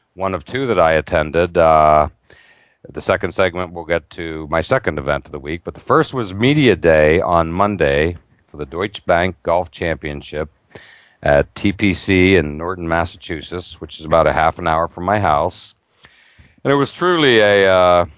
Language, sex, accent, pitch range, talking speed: English, male, American, 80-100 Hz, 180 wpm